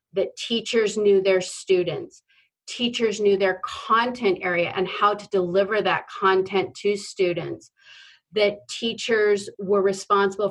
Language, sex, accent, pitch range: English, female, American, 185-220 Hz